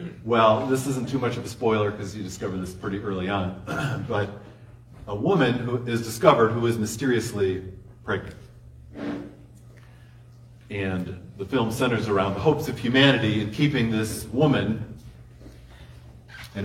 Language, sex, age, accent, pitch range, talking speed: English, male, 40-59, American, 95-125 Hz, 140 wpm